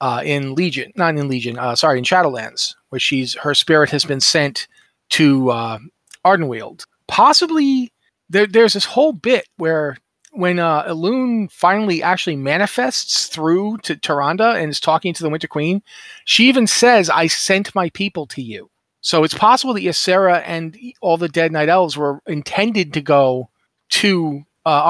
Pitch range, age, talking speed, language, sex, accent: 150-200 Hz, 40-59, 165 wpm, English, male, American